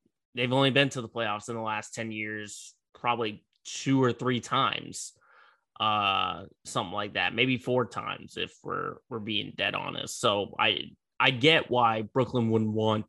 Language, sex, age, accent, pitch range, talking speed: English, male, 20-39, American, 115-135 Hz, 170 wpm